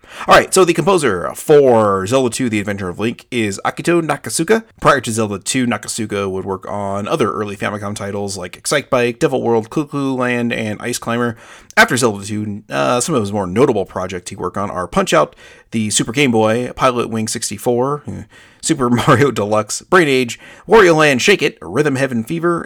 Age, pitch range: 30-49, 100-125 Hz